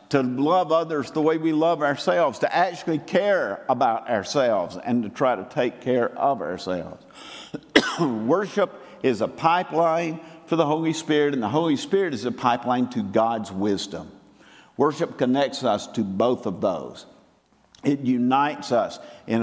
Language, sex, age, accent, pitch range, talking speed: English, male, 50-69, American, 120-160 Hz, 155 wpm